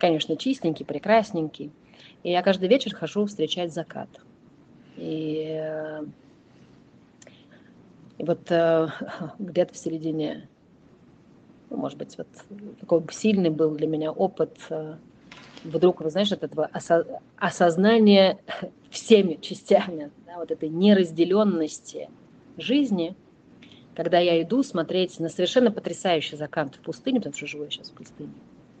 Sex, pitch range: female, 160-205 Hz